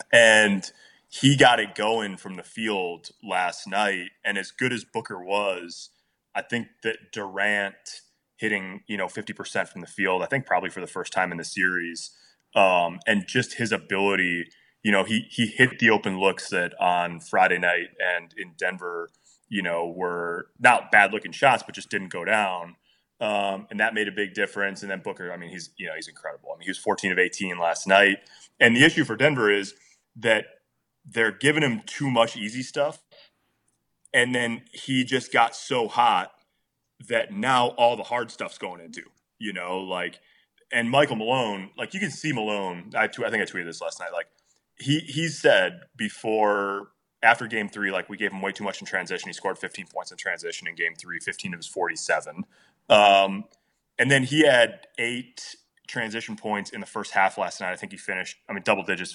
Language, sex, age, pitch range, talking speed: English, male, 20-39, 95-120 Hz, 200 wpm